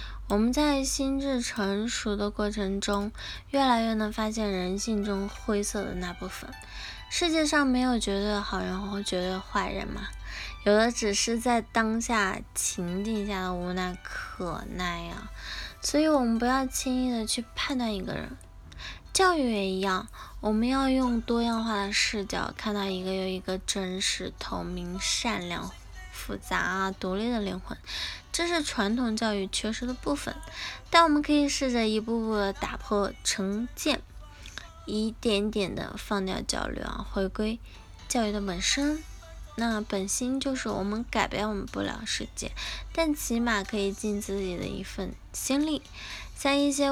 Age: 10-29